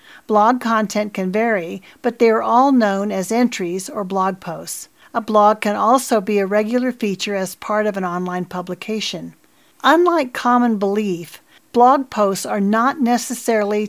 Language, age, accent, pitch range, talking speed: English, 50-69, American, 195-240 Hz, 155 wpm